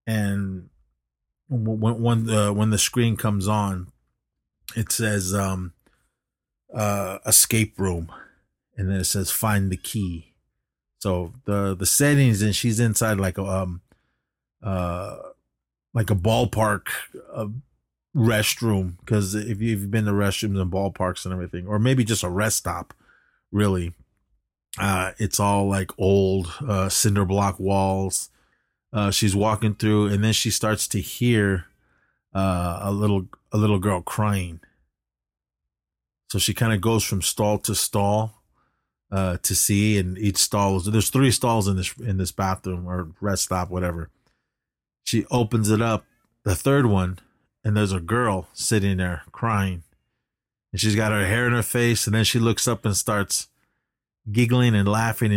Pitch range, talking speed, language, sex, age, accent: 95-110 Hz, 155 wpm, English, male, 30-49, American